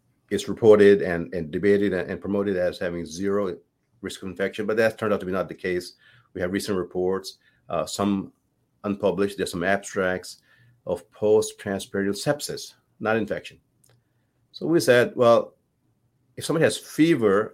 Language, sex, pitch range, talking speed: English, male, 100-120 Hz, 155 wpm